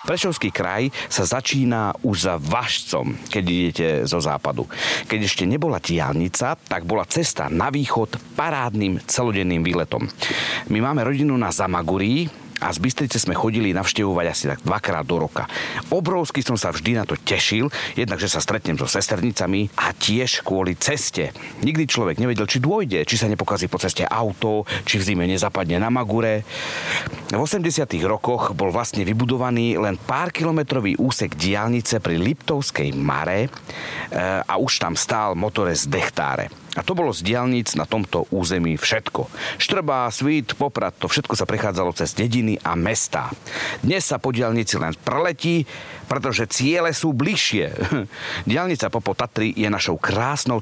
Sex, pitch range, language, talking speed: male, 95-135 Hz, Slovak, 150 wpm